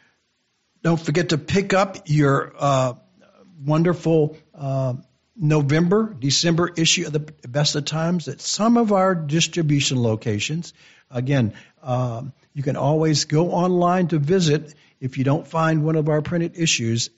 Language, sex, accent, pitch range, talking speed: English, male, American, 130-175 Hz, 145 wpm